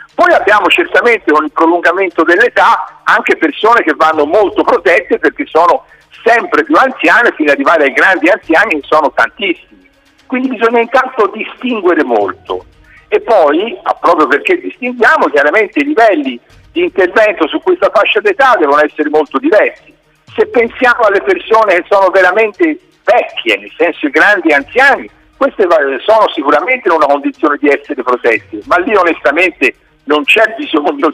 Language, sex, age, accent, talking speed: Italian, male, 50-69, native, 150 wpm